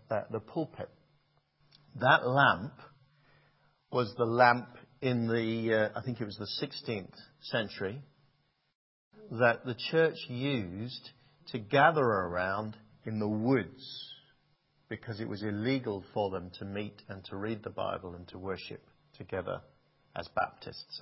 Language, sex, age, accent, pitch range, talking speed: English, male, 50-69, British, 105-135 Hz, 135 wpm